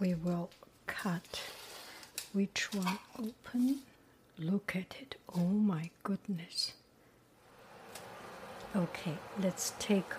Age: 60-79